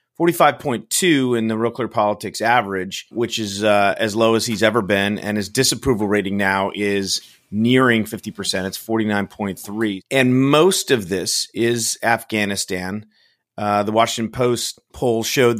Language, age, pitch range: English, 30-49, 100-120 Hz